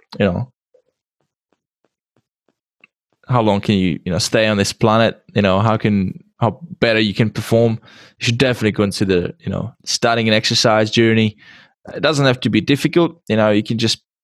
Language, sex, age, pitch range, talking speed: English, male, 10-29, 100-125 Hz, 175 wpm